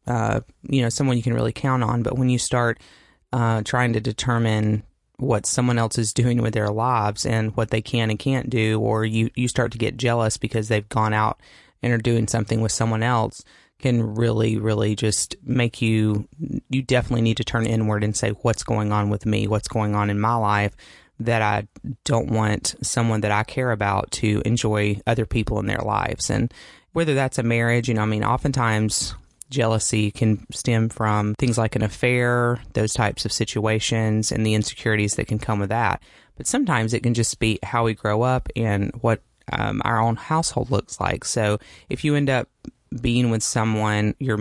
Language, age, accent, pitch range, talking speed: English, 30-49, American, 110-120 Hz, 200 wpm